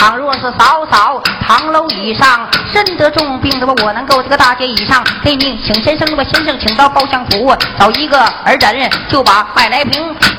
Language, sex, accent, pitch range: Chinese, female, native, 250-305 Hz